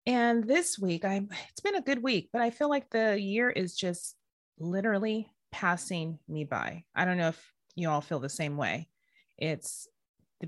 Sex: female